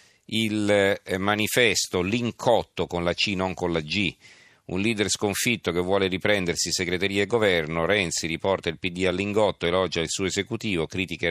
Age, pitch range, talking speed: 40-59, 85-100 Hz, 155 wpm